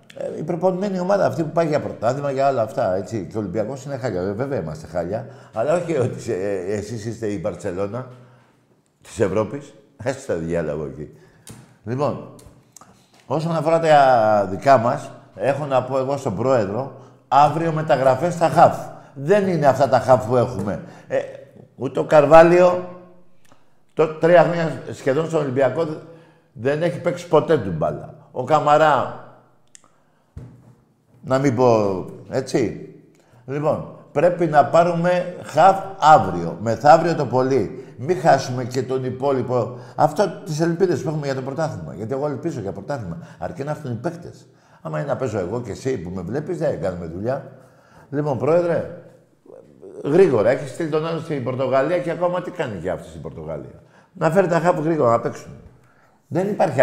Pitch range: 125-165 Hz